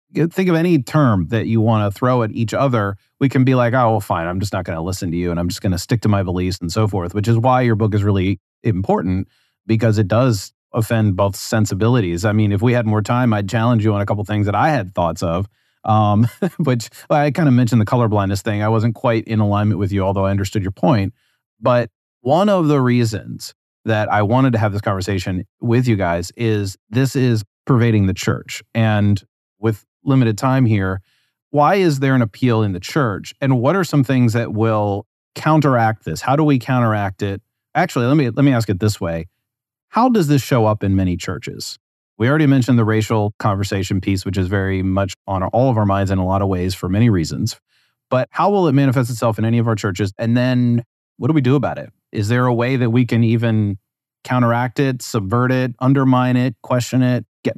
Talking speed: 230 wpm